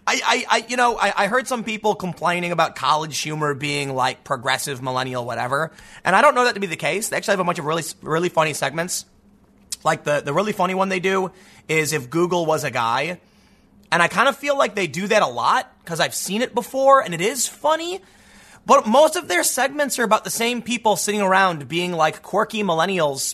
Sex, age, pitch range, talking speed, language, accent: male, 30-49, 160-225 Hz, 225 wpm, English, American